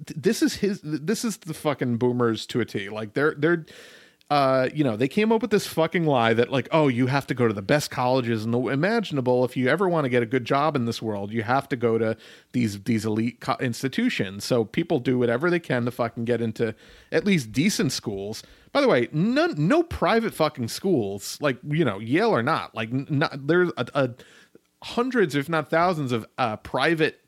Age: 30-49